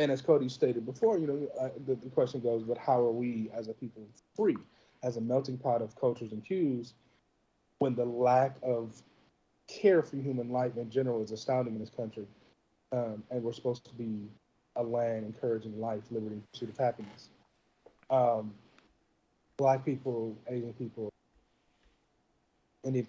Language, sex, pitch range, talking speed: English, male, 110-130 Hz, 165 wpm